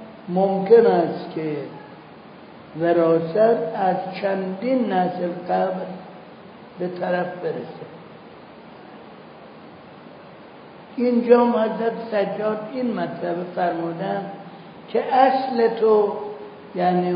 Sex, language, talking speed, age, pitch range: male, Persian, 75 wpm, 60-79, 180-215 Hz